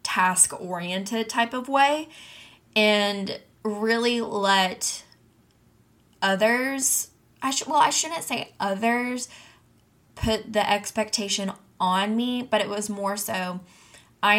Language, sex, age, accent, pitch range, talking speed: English, female, 10-29, American, 180-215 Hz, 115 wpm